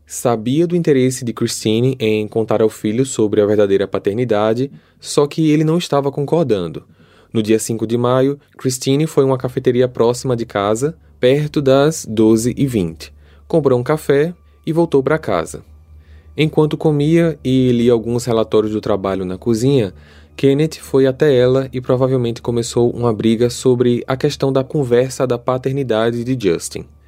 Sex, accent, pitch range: male, Brazilian, 110-140 Hz